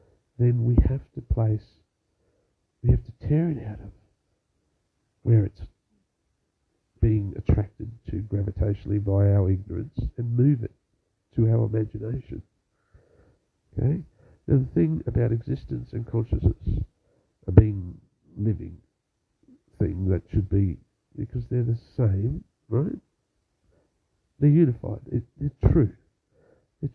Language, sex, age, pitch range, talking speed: English, male, 50-69, 95-120 Hz, 120 wpm